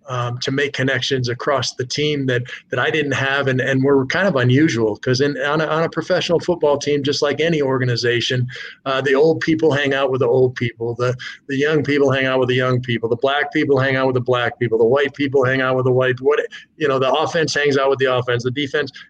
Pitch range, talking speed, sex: 130-150 Hz, 250 wpm, male